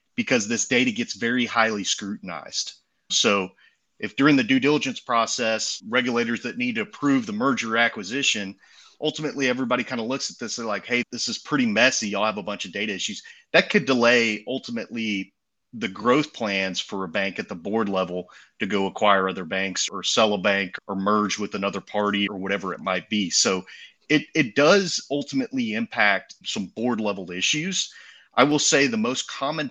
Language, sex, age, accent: English, male, 30-49, American